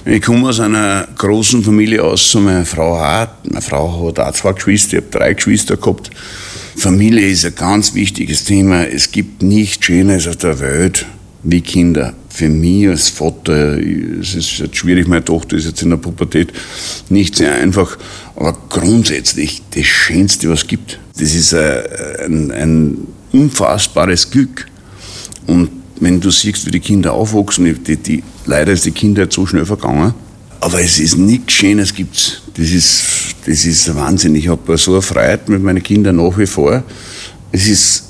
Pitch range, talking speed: 80-100 Hz, 170 wpm